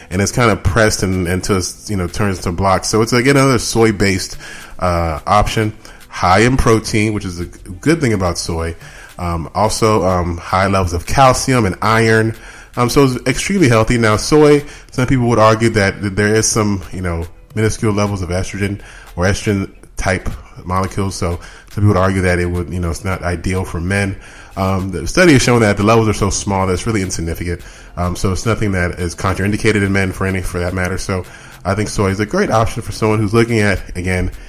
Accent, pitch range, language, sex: American, 90-110 Hz, English, male